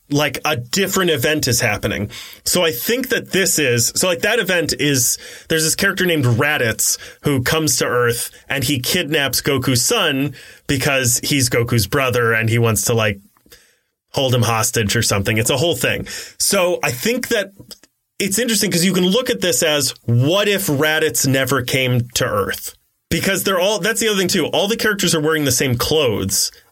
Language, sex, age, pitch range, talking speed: English, male, 30-49, 120-155 Hz, 190 wpm